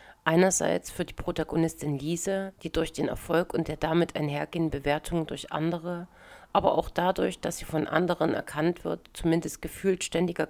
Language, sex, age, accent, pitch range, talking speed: German, female, 40-59, German, 155-180 Hz, 160 wpm